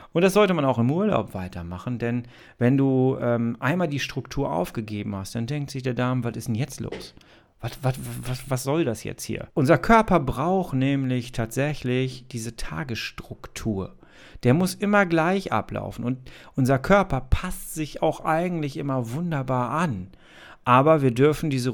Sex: male